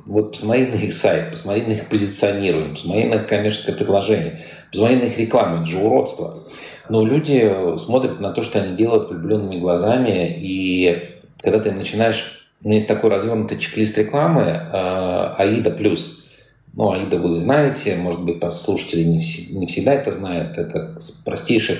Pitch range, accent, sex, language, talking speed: 90-115 Hz, native, male, Russian, 160 wpm